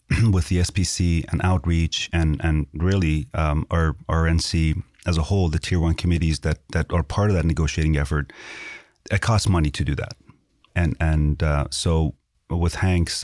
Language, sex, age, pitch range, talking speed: English, male, 30-49, 80-90 Hz, 175 wpm